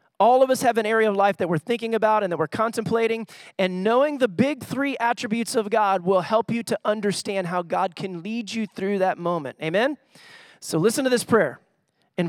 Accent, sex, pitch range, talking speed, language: American, male, 205-275 Hz, 215 wpm, English